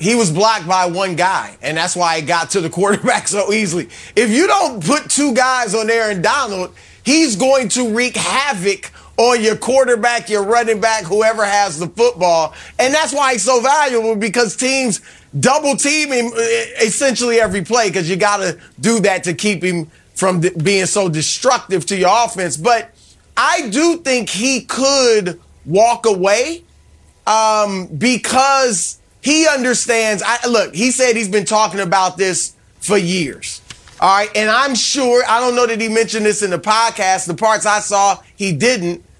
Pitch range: 190-245 Hz